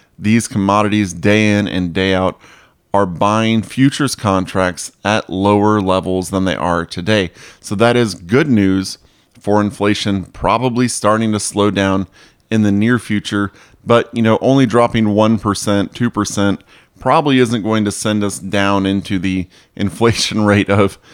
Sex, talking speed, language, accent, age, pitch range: male, 150 wpm, English, American, 30-49, 100-120 Hz